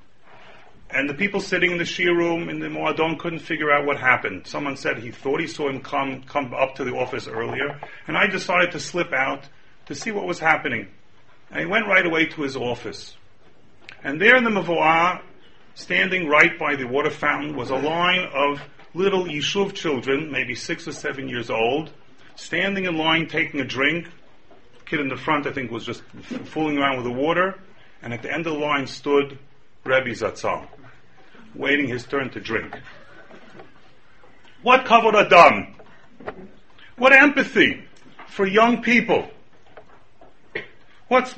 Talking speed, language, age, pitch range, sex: 170 wpm, English, 40-59, 140-200 Hz, male